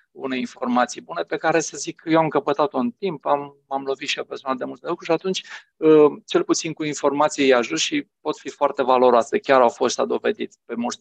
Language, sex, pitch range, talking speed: Romanian, male, 130-155 Hz, 220 wpm